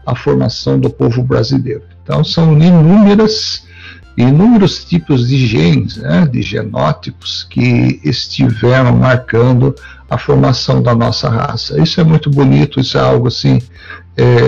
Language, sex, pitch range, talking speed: Portuguese, male, 105-145 Hz, 135 wpm